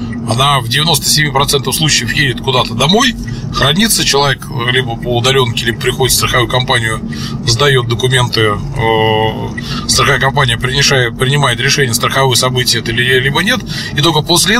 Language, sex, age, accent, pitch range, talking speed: Russian, male, 20-39, native, 125-155 Hz, 125 wpm